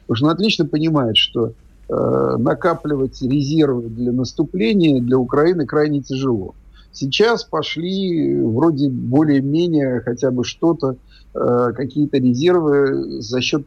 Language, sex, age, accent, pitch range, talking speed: Russian, male, 50-69, native, 120-150 Hz, 120 wpm